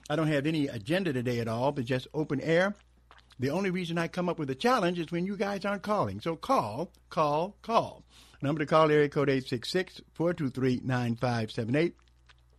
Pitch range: 120-165 Hz